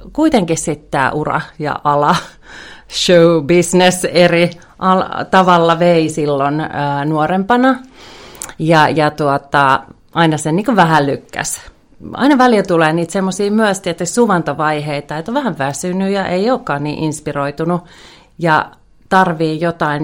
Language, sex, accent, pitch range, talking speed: Finnish, female, native, 150-190 Hz, 130 wpm